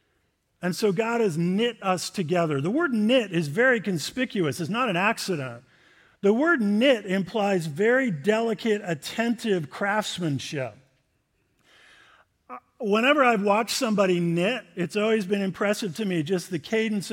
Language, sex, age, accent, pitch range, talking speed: English, male, 50-69, American, 170-220 Hz, 135 wpm